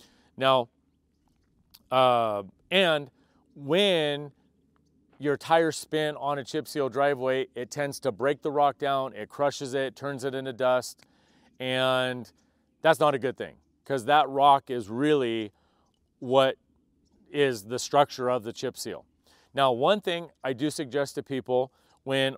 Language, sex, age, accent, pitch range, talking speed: English, male, 40-59, American, 125-150 Hz, 145 wpm